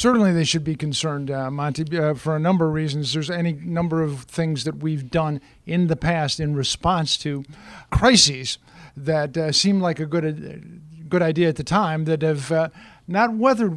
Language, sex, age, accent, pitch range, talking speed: English, male, 50-69, American, 150-180 Hz, 195 wpm